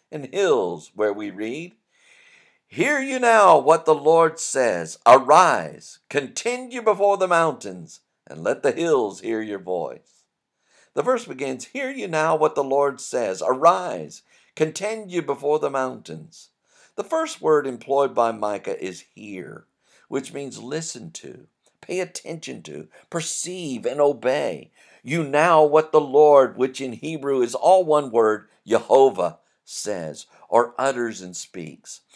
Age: 50-69